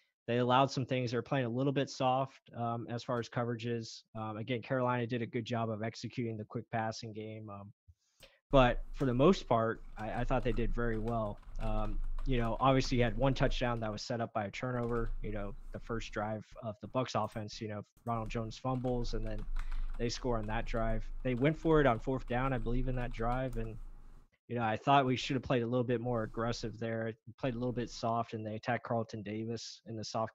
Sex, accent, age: male, American, 20-39